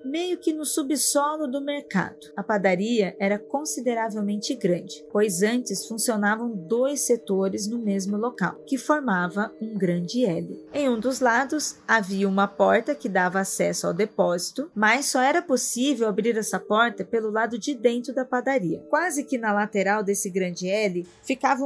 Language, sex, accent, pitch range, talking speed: Portuguese, female, Brazilian, 200-265 Hz, 160 wpm